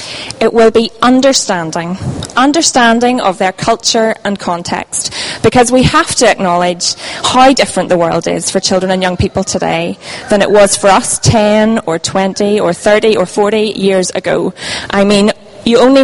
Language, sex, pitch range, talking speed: English, female, 190-240 Hz, 165 wpm